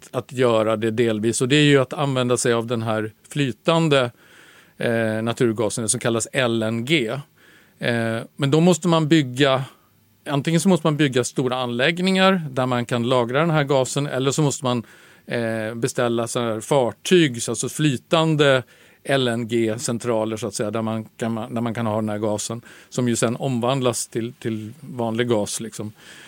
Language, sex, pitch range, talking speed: Swedish, male, 115-145 Hz, 175 wpm